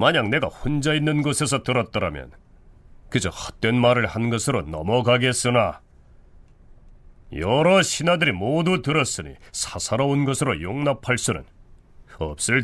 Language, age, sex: Korean, 40-59, male